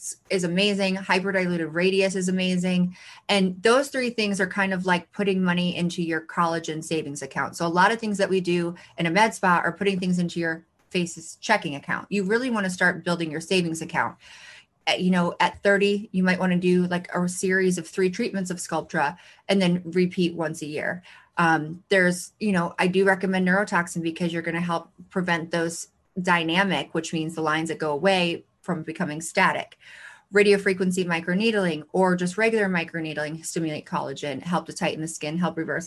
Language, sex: English, female